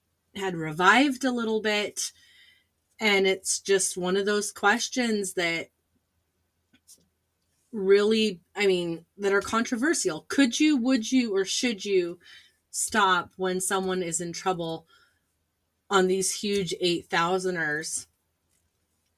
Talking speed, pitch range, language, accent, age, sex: 115 wpm, 170-215 Hz, English, American, 30-49, female